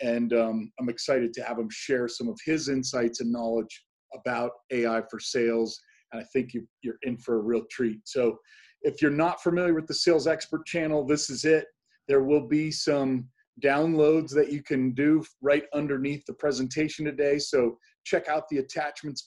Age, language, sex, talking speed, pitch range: 40-59, English, male, 185 wpm, 125-150 Hz